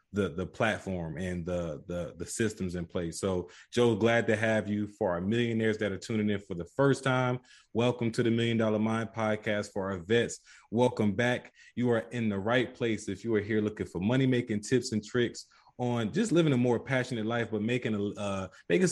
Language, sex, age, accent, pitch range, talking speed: English, male, 20-39, American, 100-120 Hz, 205 wpm